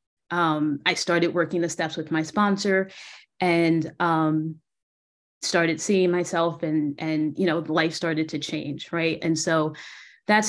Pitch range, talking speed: 155-175 Hz, 150 wpm